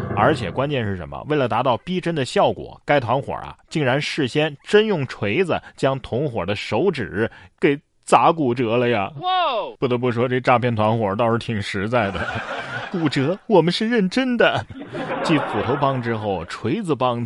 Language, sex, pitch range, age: Chinese, male, 115-170 Hz, 30-49